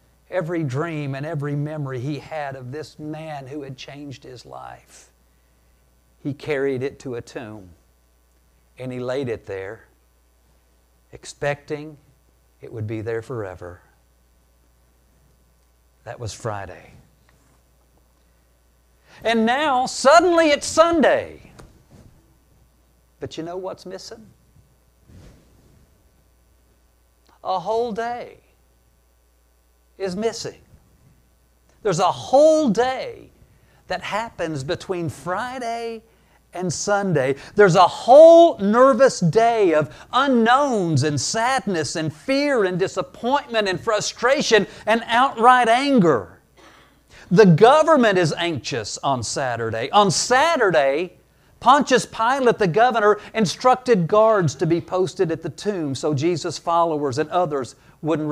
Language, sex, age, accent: English, male, 60-79, American